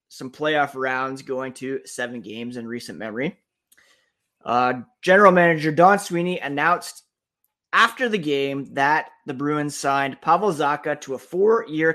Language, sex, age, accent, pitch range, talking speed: English, male, 20-39, American, 130-165 Hz, 140 wpm